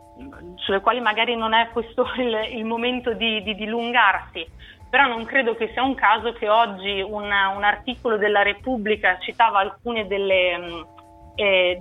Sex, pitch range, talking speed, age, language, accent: female, 210-240 Hz, 150 wpm, 30-49, Italian, native